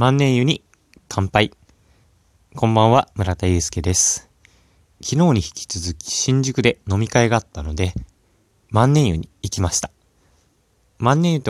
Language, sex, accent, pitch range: Japanese, male, native, 90-115 Hz